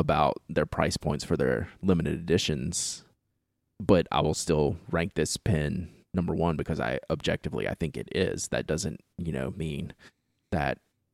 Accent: American